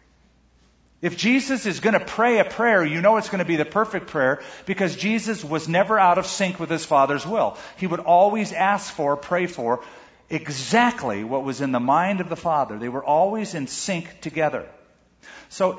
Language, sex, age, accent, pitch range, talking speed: English, male, 40-59, American, 130-195 Hz, 195 wpm